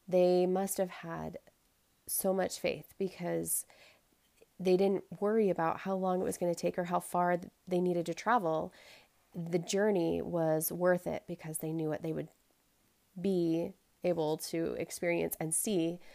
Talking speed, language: 160 wpm, English